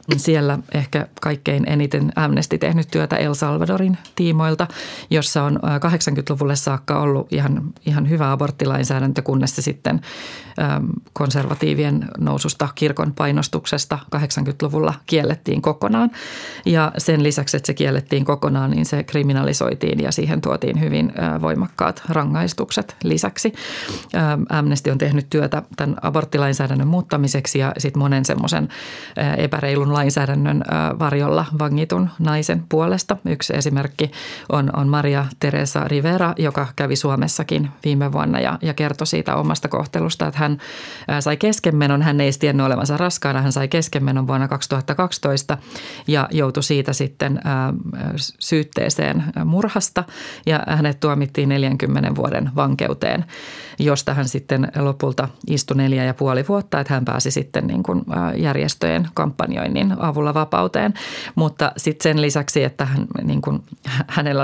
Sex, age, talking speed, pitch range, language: female, 30-49, 120 wpm, 135-155 Hz, Finnish